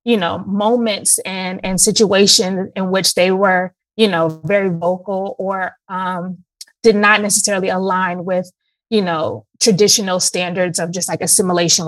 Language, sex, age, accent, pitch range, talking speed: English, female, 20-39, American, 180-205 Hz, 145 wpm